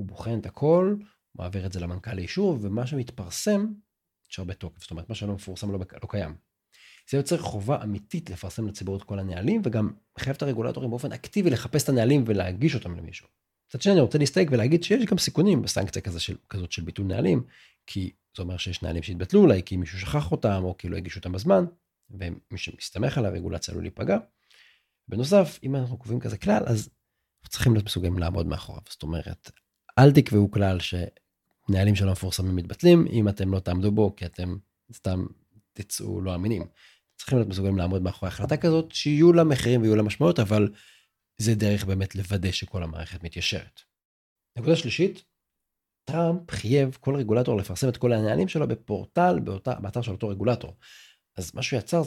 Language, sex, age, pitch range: Hebrew, male, 40-59, 95-135 Hz